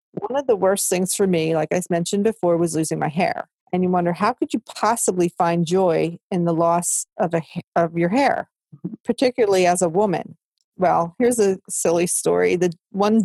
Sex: female